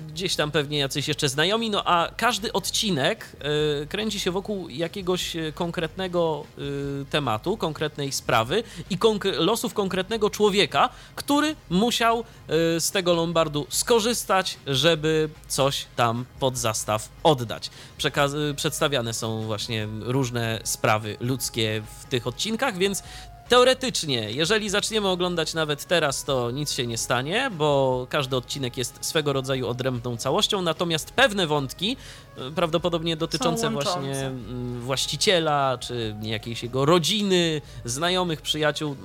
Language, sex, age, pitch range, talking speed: Polish, male, 30-49, 130-180 Hz, 115 wpm